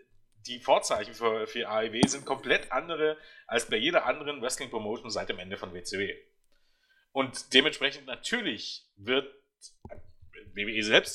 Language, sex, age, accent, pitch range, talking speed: German, male, 30-49, German, 115-150 Hz, 135 wpm